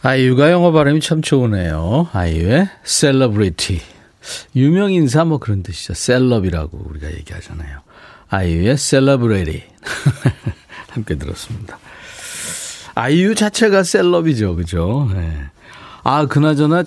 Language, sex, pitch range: Korean, male, 95-145 Hz